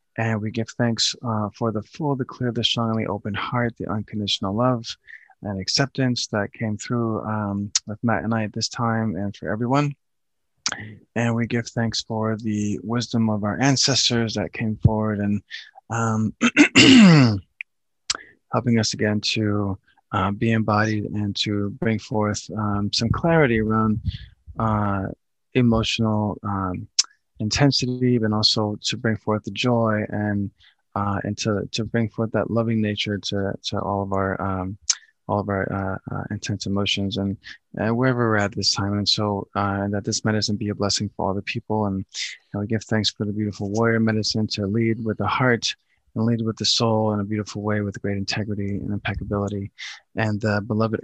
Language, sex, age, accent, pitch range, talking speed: English, male, 20-39, American, 100-115 Hz, 180 wpm